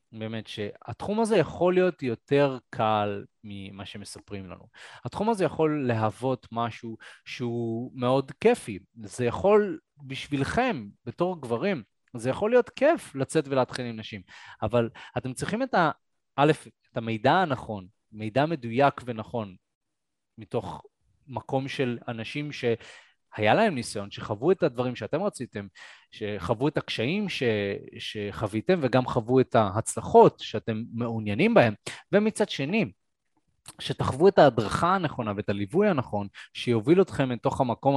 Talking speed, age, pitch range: 130 wpm, 20-39, 110-145 Hz